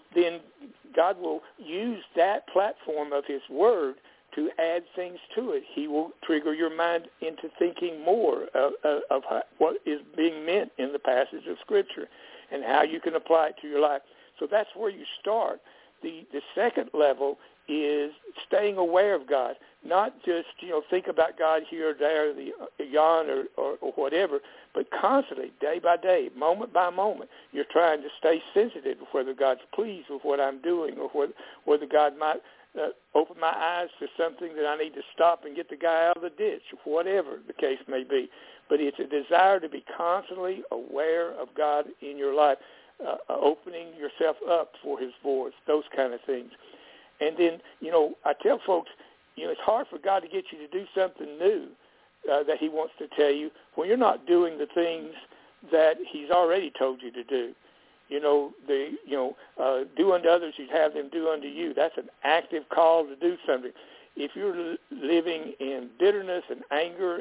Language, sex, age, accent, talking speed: English, male, 60-79, American, 195 wpm